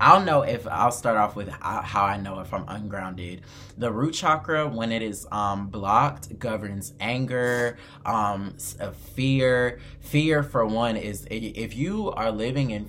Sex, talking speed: male, 160 wpm